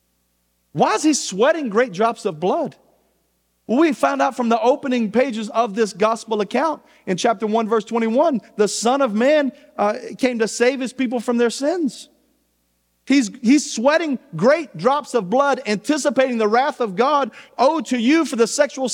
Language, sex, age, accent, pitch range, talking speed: English, male, 40-59, American, 225-285 Hz, 175 wpm